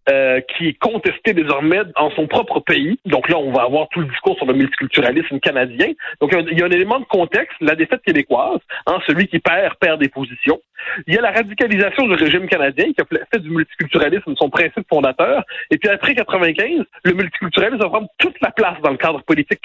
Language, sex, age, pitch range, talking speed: French, male, 40-59, 155-230 Hz, 215 wpm